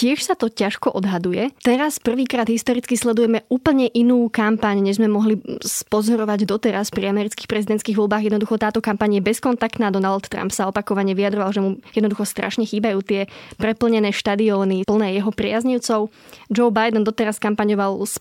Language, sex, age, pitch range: Slovak, female, 20-39, 200-230 Hz